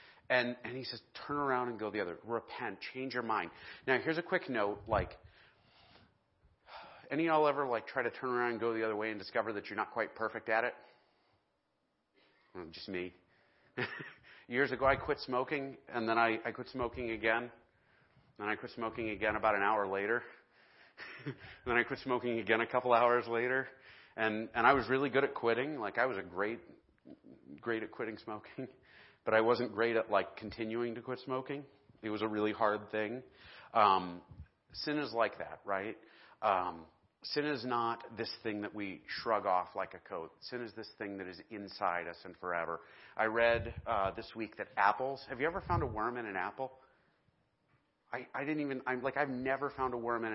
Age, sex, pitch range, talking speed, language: 30-49, male, 100-125 Hz, 200 wpm, English